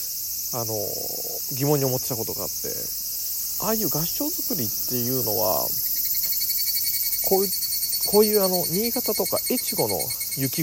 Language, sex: Japanese, male